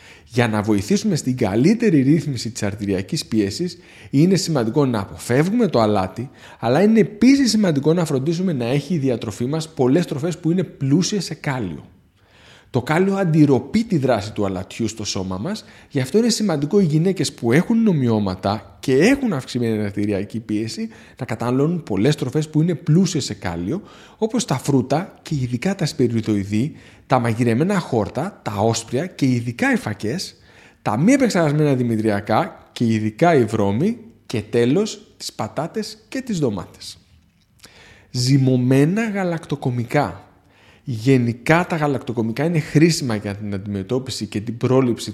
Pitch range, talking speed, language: 110-170 Hz, 145 wpm, Greek